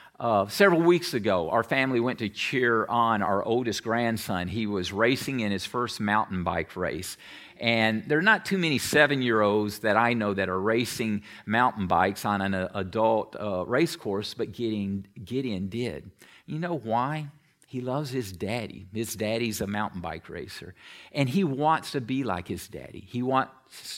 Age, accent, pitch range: 50-69, American, 105-145 Hz